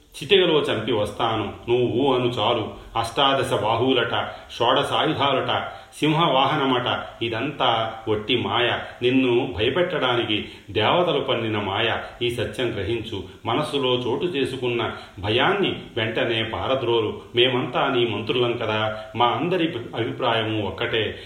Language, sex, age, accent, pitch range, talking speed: Telugu, male, 40-59, native, 110-130 Hz, 105 wpm